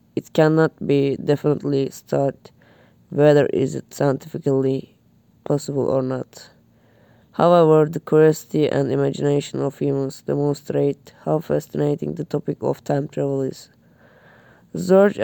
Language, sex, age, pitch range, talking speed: Turkish, female, 20-39, 135-155 Hz, 120 wpm